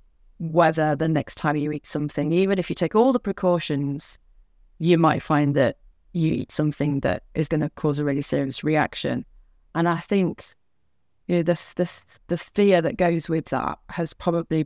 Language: English